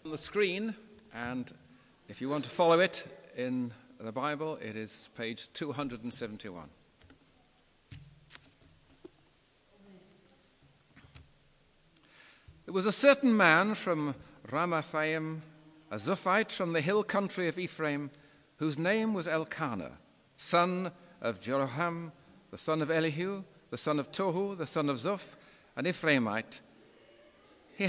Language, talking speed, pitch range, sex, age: English, 115 wpm, 140-185 Hz, male, 50-69